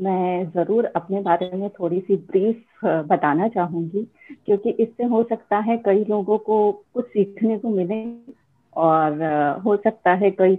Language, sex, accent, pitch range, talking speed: Hindi, female, native, 185-230 Hz, 155 wpm